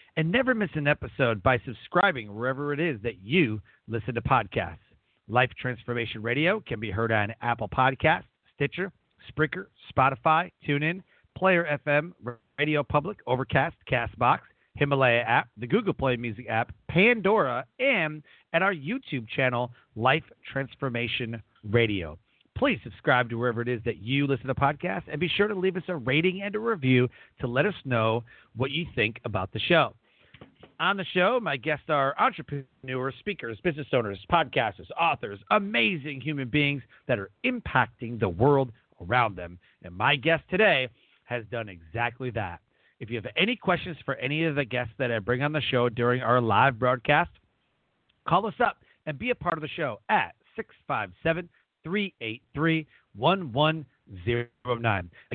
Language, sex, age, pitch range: English, male, 40-59, 120-165 Hz